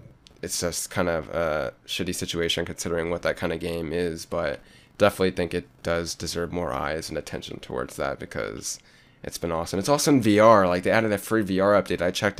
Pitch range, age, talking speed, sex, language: 85-95 Hz, 20-39, 210 wpm, male, English